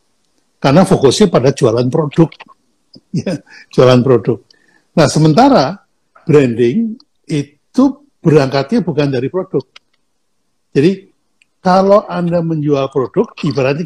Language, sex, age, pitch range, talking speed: Indonesian, male, 60-79, 135-185 Hz, 90 wpm